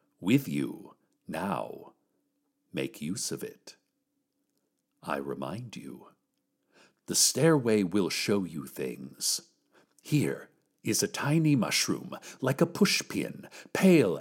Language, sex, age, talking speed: English, male, 60-79, 105 wpm